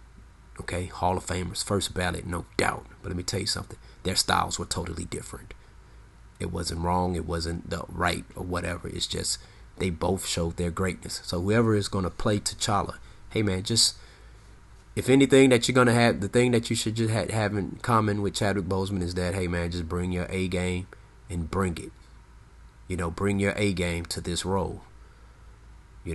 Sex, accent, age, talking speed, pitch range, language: male, American, 30-49, 195 wpm, 90-115 Hz, English